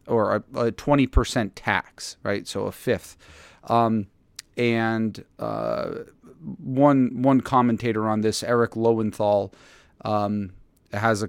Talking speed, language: 115 wpm, English